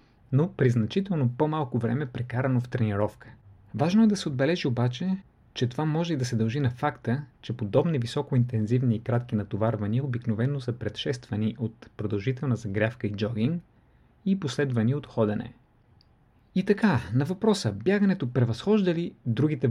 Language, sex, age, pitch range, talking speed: Bulgarian, male, 30-49, 115-140 Hz, 150 wpm